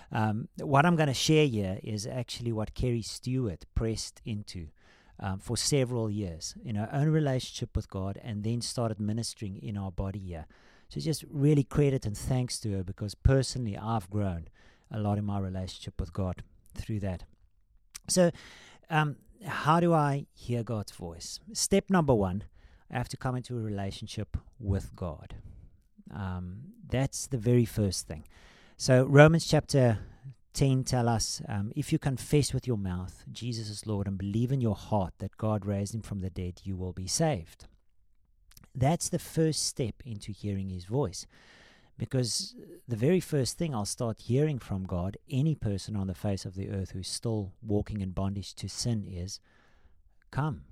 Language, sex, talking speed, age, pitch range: English, male, 175 wpm, 50-69, 95-130 Hz